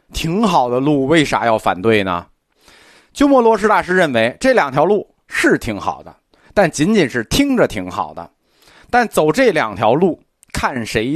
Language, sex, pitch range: Chinese, male, 115-185 Hz